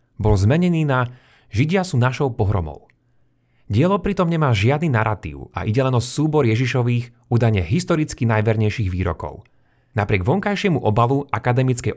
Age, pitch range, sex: 30-49, 110-135 Hz, male